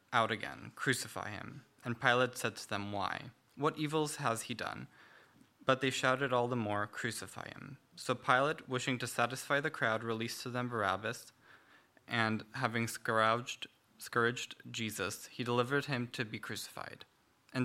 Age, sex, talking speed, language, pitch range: 20-39, male, 155 wpm, English, 115-135 Hz